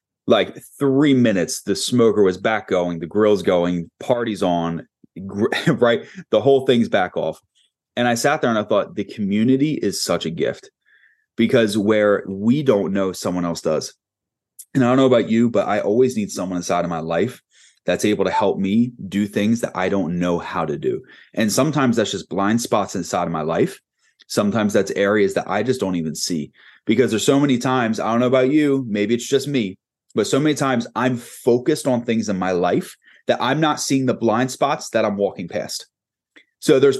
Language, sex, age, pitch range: English, male, 30-49, 105-135 Hz